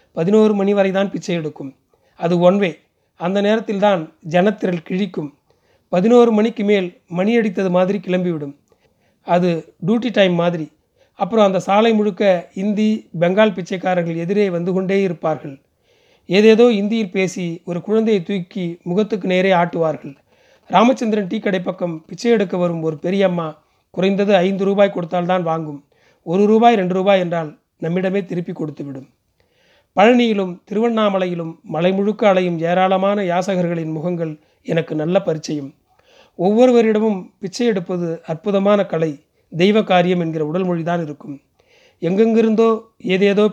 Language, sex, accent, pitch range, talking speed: Tamil, male, native, 165-205 Hz, 125 wpm